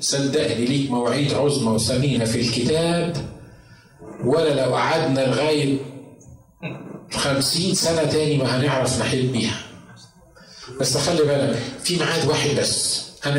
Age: 50-69